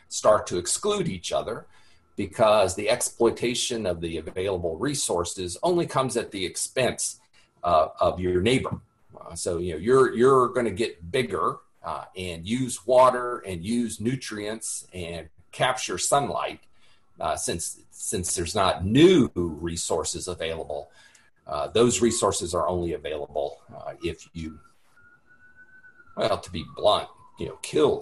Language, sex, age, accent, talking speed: English, male, 50-69, American, 140 wpm